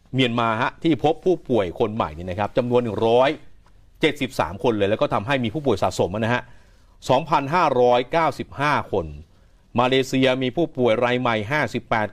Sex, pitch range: male, 105-140 Hz